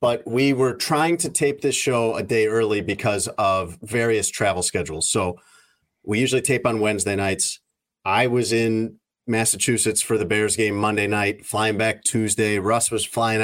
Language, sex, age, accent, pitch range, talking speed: English, male, 30-49, American, 105-125 Hz, 175 wpm